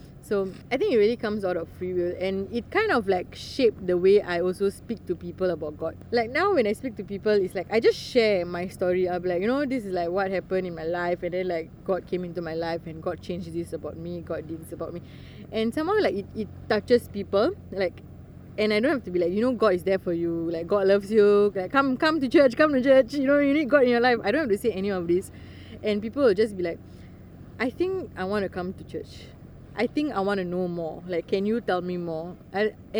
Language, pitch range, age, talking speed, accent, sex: English, 175-225 Hz, 20-39, 265 wpm, Malaysian, female